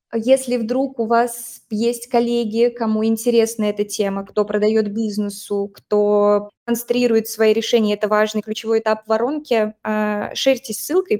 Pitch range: 210-235 Hz